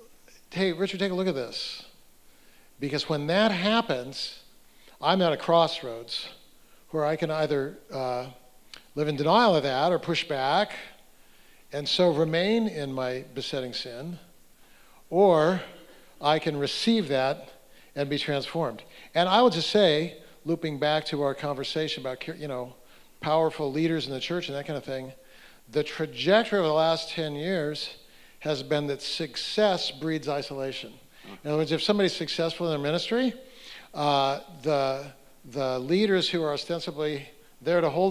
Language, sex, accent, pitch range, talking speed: English, male, American, 145-185 Hz, 155 wpm